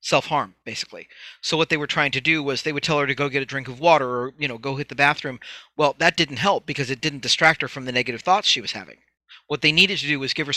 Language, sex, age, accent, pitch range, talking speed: English, male, 40-59, American, 135-170 Hz, 295 wpm